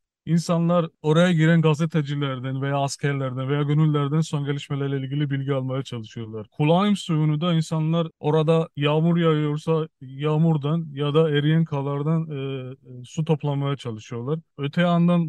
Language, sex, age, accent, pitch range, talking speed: Turkish, male, 30-49, native, 135-155 Hz, 125 wpm